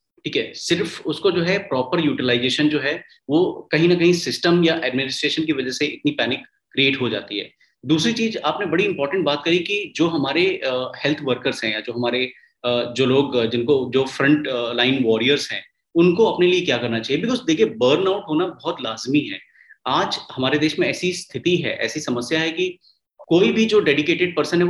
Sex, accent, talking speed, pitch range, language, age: male, native, 205 wpm, 130-175 Hz, Hindi, 30-49